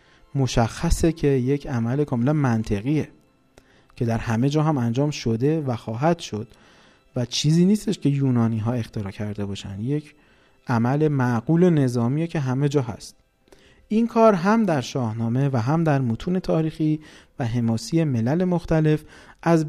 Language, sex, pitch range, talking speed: Persian, male, 120-175 Hz, 145 wpm